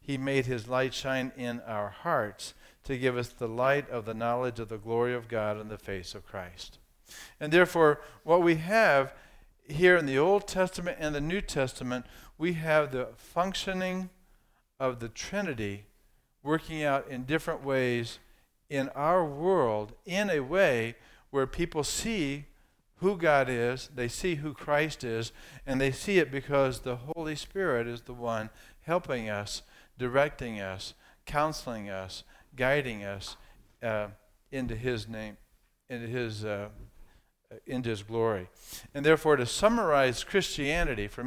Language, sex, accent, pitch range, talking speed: English, male, American, 115-155 Hz, 150 wpm